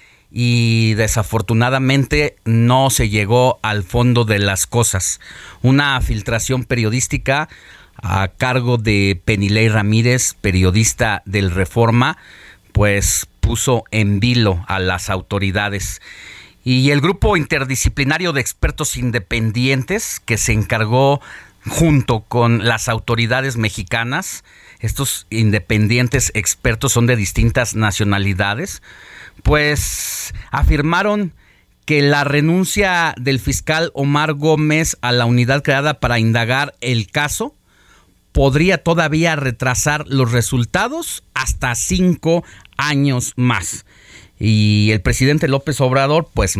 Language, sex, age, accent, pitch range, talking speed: Spanish, male, 40-59, Mexican, 105-140 Hz, 105 wpm